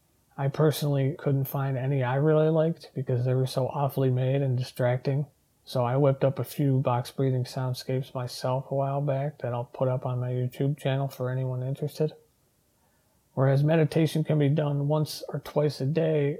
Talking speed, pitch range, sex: 185 wpm, 130-145 Hz, male